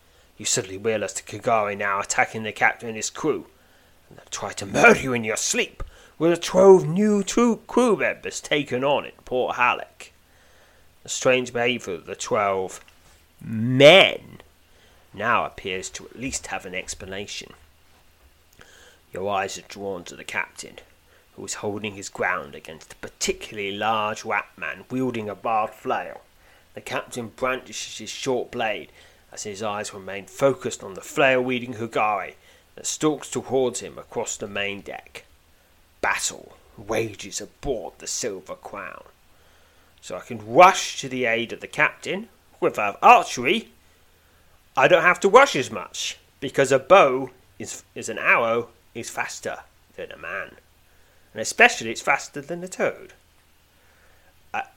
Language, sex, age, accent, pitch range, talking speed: English, male, 30-49, British, 85-125 Hz, 155 wpm